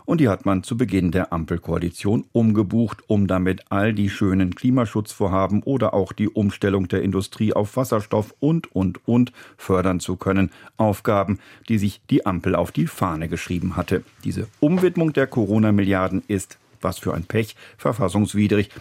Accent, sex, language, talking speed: German, male, German, 155 wpm